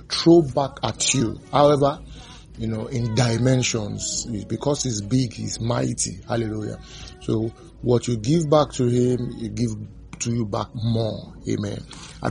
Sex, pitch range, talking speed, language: male, 115-145 Hz, 145 wpm, English